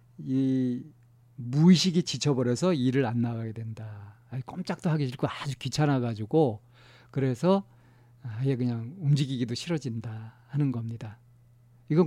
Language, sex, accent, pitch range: Korean, male, native, 120-160 Hz